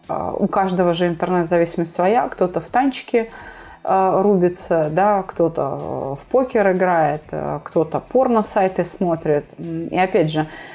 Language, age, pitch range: Russian, 30-49, 160-200 Hz